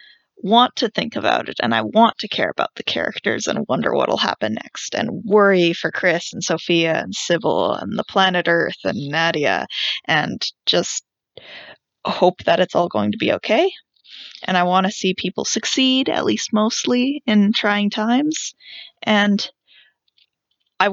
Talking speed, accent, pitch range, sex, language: 165 wpm, American, 185-230 Hz, female, English